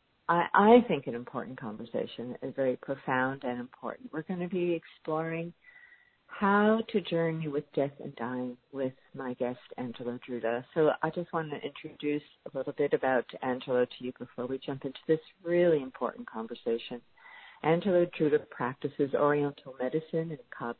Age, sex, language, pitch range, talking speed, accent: 50-69, female, English, 130-180 Hz, 160 wpm, American